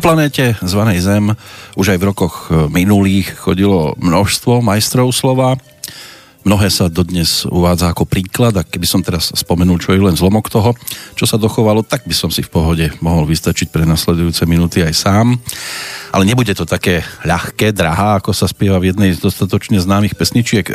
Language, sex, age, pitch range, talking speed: Slovak, male, 40-59, 90-115 Hz, 175 wpm